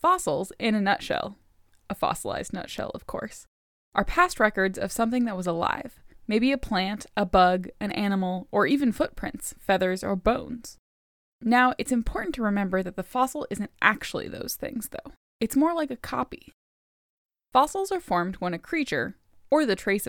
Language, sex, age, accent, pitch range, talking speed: English, female, 10-29, American, 195-260 Hz, 170 wpm